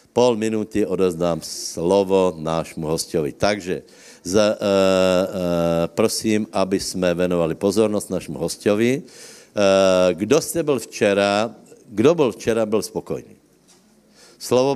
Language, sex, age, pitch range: Slovak, male, 60-79, 90-110 Hz